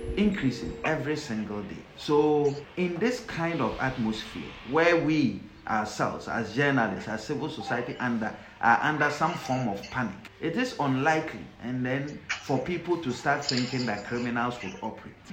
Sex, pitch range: male, 120-165 Hz